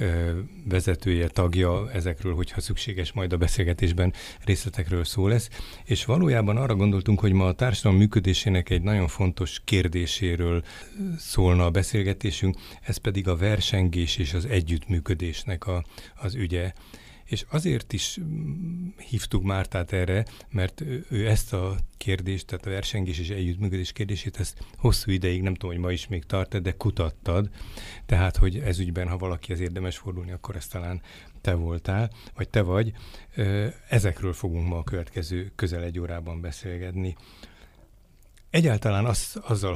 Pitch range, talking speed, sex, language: 90-105 Hz, 140 wpm, male, Hungarian